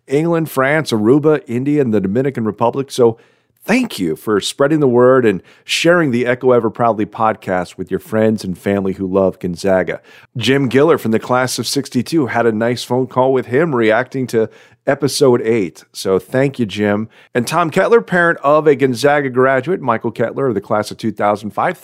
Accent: American